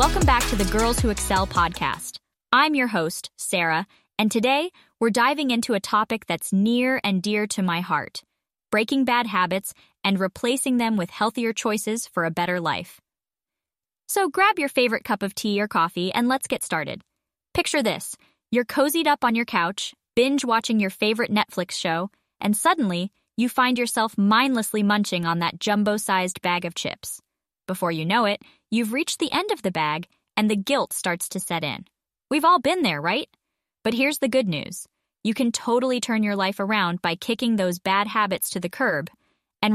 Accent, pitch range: American, 185-245 Hz